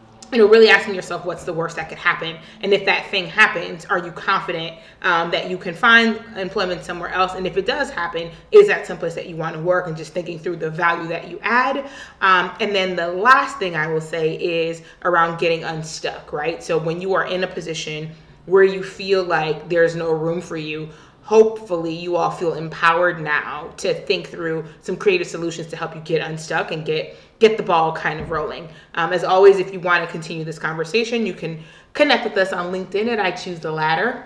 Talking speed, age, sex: 220 wpm, 30-49, female